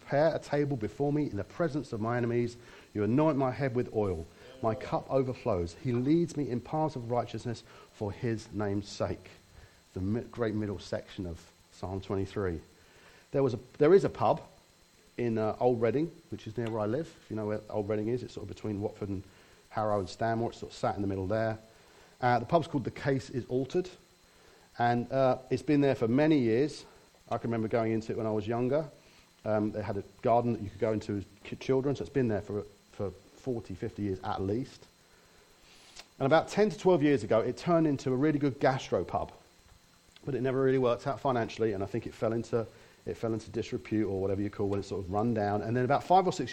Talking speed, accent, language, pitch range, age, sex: 230 wpm, British, English, 105-130 Hz, 40-59, male